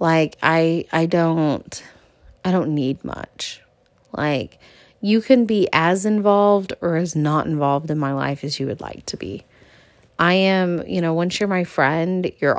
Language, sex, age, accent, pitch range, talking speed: English, female, 30-49, American, 165-200 Hz, 170 wpm